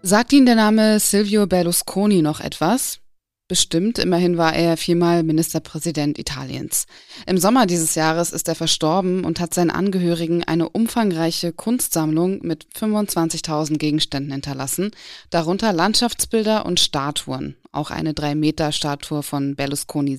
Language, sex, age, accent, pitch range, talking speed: German, female, 20-39, German, 155-185 Hz, 130 wpm